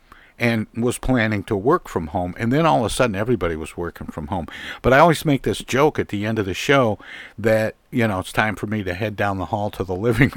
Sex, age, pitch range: male, 60-79, 90-115 Hz